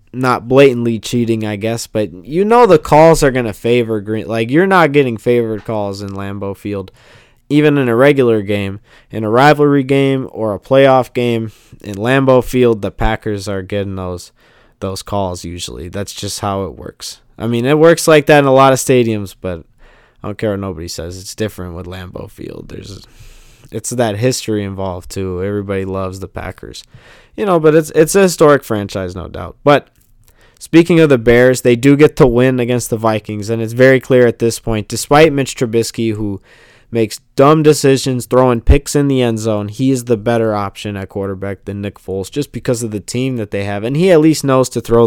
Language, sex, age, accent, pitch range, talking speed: English, male, 20-39, American, 105-135 Hz, 205 wpm